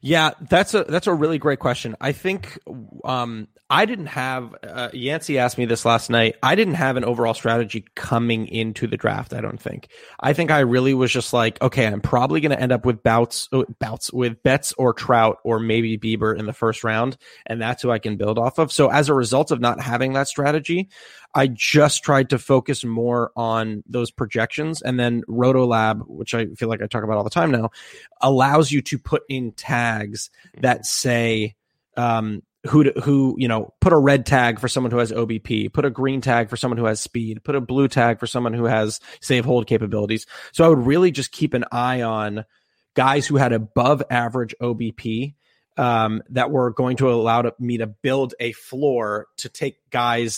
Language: English